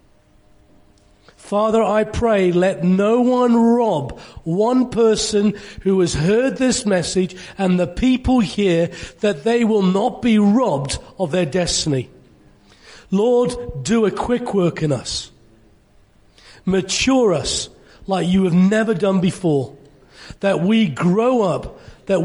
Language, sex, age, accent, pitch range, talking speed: English, male, 40-59, British, 145-205 Hz, 125 wpm